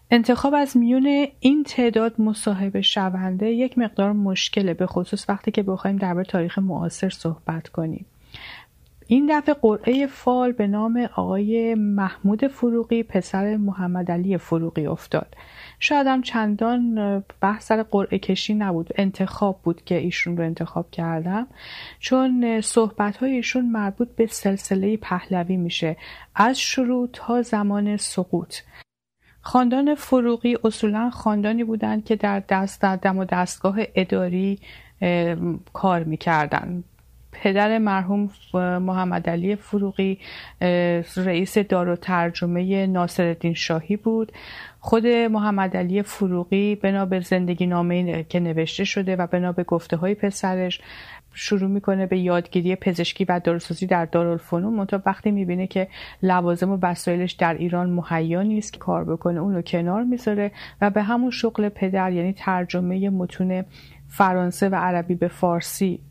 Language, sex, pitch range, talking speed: Persian, female, 175-215 Hz, 125 wpm